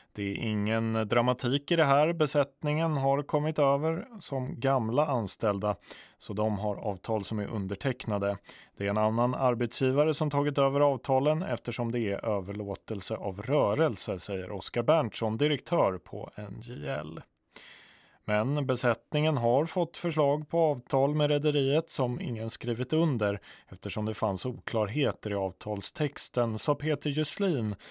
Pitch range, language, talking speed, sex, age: 110-150 Hz, Swedish, 140 wpm, male, 20-39